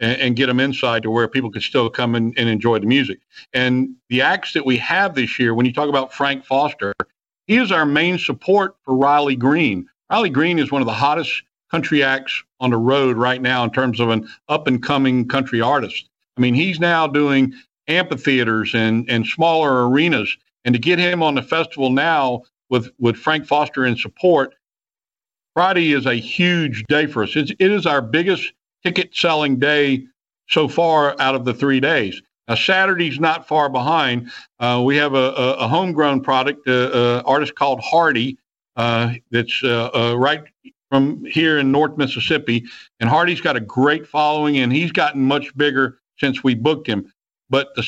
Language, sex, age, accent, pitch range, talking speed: English, male, 50-69, American, 125-155 Hz, 185 wpm